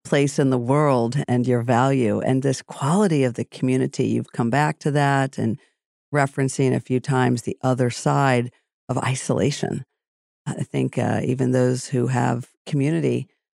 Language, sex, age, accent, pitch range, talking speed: English, female, 50-69, American, 120-145 Hz, 160 wpm